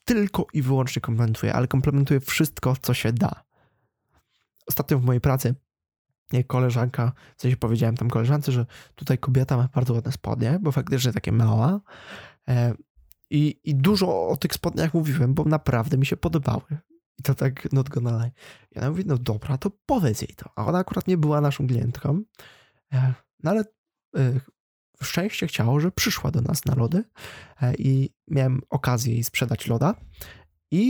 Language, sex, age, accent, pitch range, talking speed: Polish, male, 20-39, native, 125-150 Hz, 155 wpm